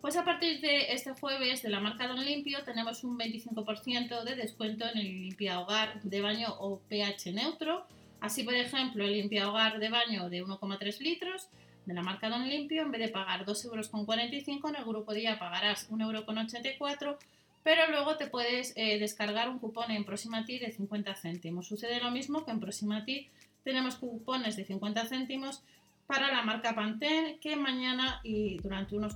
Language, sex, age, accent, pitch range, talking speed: Spanish, female, 30-49, Spanish, 210-255 Hz, 175 wpm